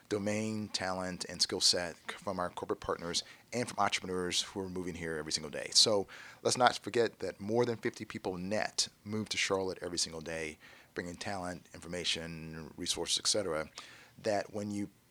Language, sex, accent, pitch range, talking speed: English, male, American, 90-105 Hz, 175 wpm